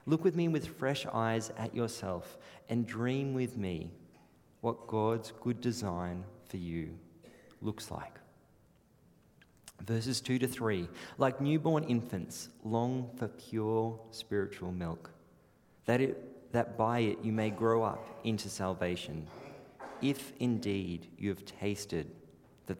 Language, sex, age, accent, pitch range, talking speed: English, male, 30-49, Australian, 100-135 Hz, 130 wpm